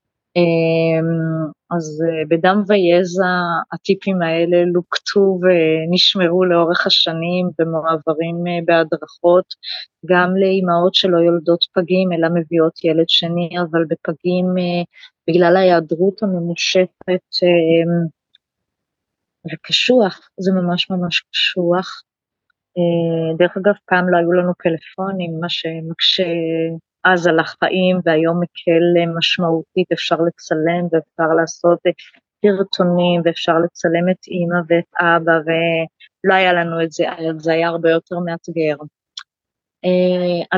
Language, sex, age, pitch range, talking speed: Hebrew, female, 20-39, 165-180 Hz, 100 wpm